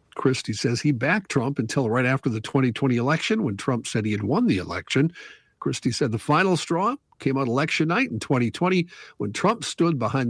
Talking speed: 200 wpm